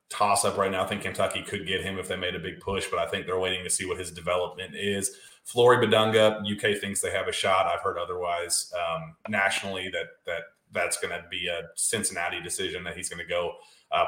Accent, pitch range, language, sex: American, 100-125 Hz, English, male